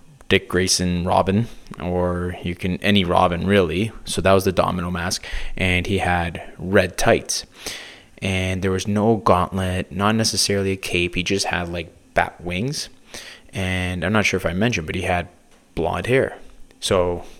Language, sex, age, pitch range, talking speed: English, male, 20-39, 85-95 Hz, 165 wpm